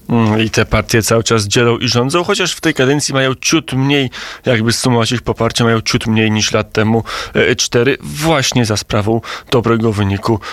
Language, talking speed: Polish, 180 wpm